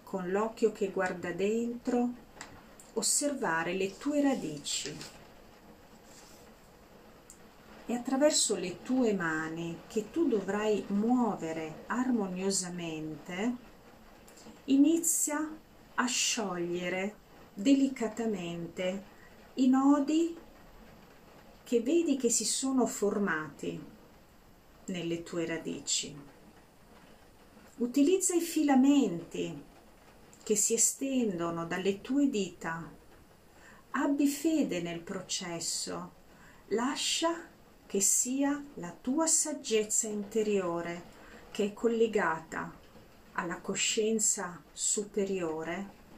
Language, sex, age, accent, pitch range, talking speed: Italian, female, 40-59, native, 180-255 Hz, 80 wpm